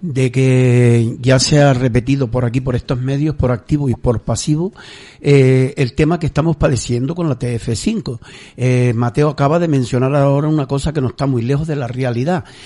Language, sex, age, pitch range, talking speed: Spanish, male, 60-79, 125-155 Hz, 195 wpm